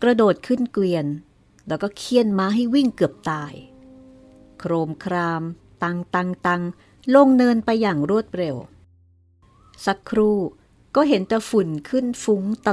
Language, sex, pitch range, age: Thai, female, 155-220 Hz, 60-79